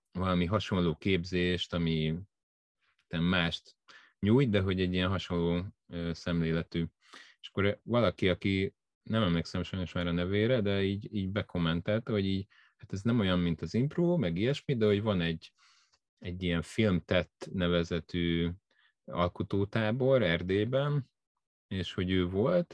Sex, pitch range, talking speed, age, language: male, 85-105 Hz, 135 wpm, 30-49, English